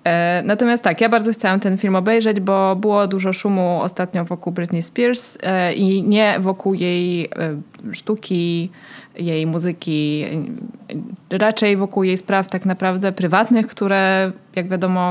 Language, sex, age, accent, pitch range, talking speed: Polish, female, 20-39, native, 170-205 Hz, 130 wpm